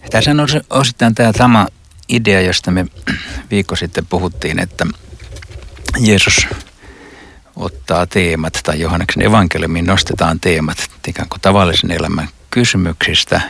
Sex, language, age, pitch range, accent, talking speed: male, Finnish, 60-79, 80-100 Hz, native, 105 wpm